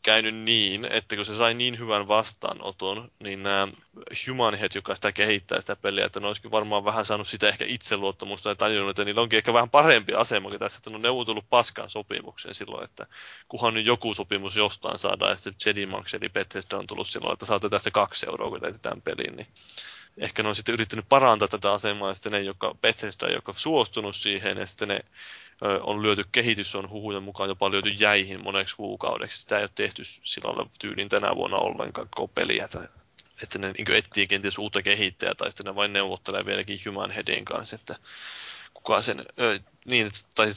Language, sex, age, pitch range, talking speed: Finnish, male, 20-39, 100-115 Hz, 190 wpm